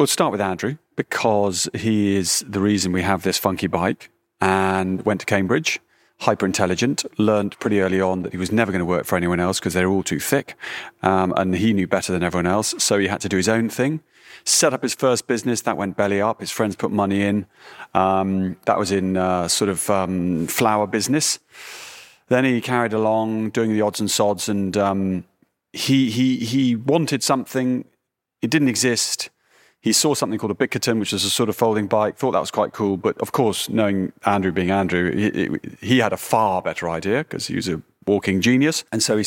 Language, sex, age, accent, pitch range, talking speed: English, male, 30-49, British, 95-120 Hz, 210 wpm